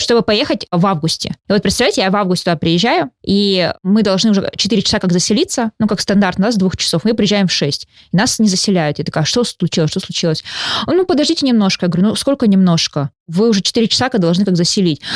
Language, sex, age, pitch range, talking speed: Russian, female, 20-39, 190-240 Hz, 220 wpm